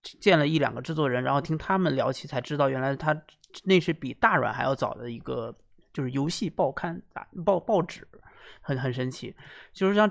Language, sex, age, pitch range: Chinese, male, 20-39, 135-185 Hz